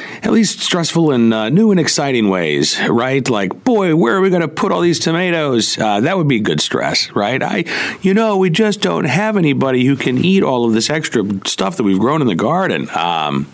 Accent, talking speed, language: American, 225 wpm, English